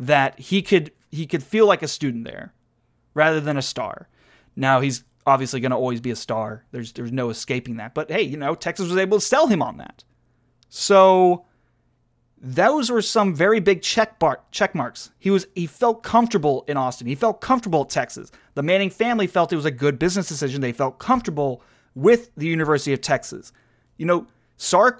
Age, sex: 30-49, male